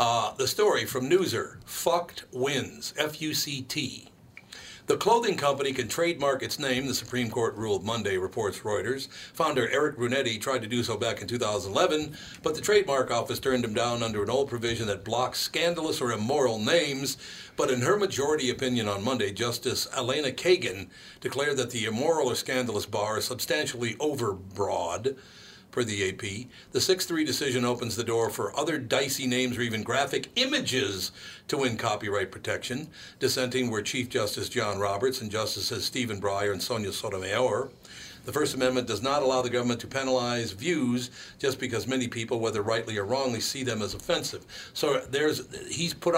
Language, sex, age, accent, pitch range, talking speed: English, male, 60-79, American, 115-150 Hz, 170 wpm